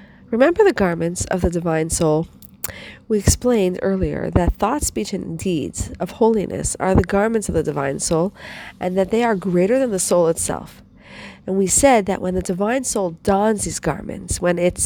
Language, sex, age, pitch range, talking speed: English, female, 40-59, 180-220 Hz, 185 wpm